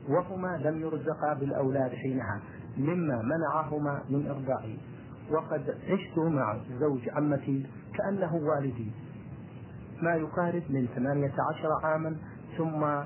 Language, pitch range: Arabic, 130-155 Hz